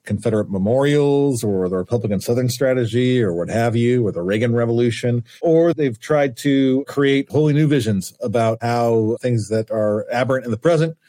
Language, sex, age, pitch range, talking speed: English, male, 40-59, 115-160 Hz, 175 wpm